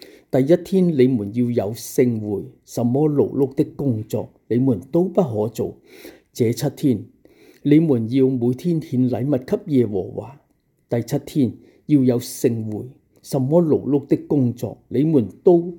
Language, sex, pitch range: English, male, 115-145 Hz